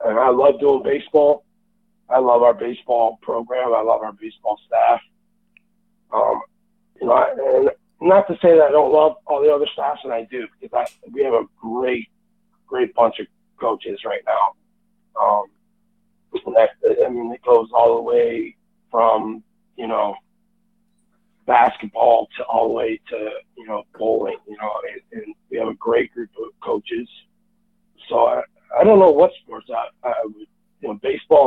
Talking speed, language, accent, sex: 175 wpm, English, American, male